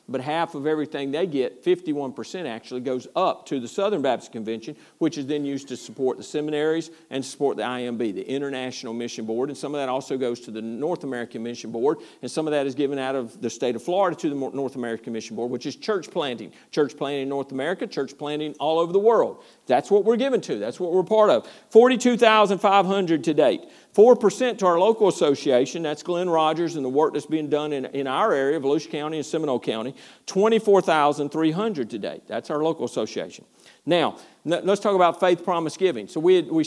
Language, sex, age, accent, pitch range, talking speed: English, male, 50-69, American, 135-190 Hz, 215 wpm